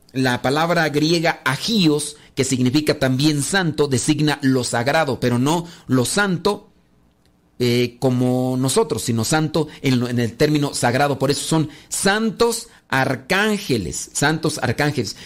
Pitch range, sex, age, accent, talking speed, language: 135-180 Hz, male, 40-59, Mexican, 130 wpm, Spanish